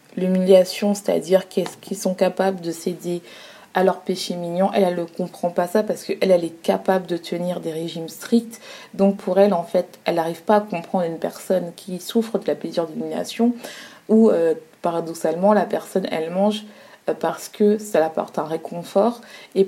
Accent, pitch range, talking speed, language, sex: French, 175-210 Hz, 185 wpm, French, female